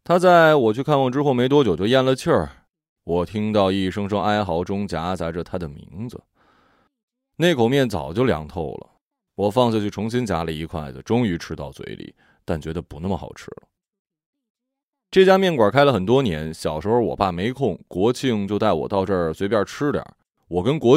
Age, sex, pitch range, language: 20-39, male, 90-140 Hz, Chinese